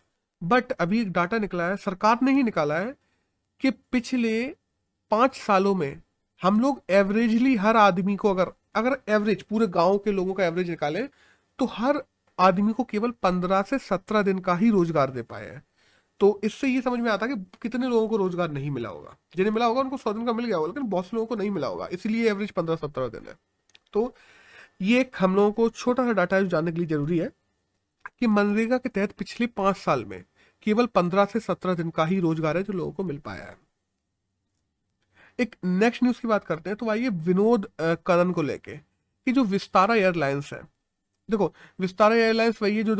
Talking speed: 160 wpm